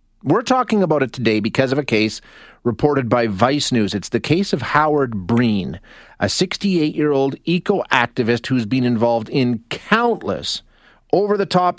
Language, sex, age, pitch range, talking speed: English, male, 40-59, 115-170 Hz, 145 wpm